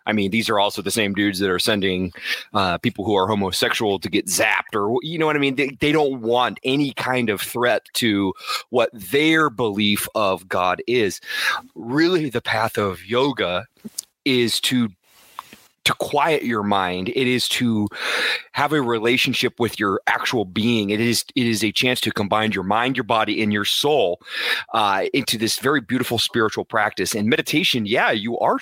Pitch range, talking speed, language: 105-140 Hz, 185 wpm, English